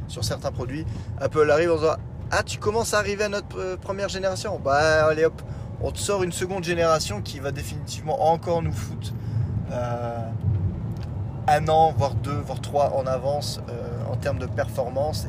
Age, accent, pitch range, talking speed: 20-39, French, 110-140 Hz, 180 wpm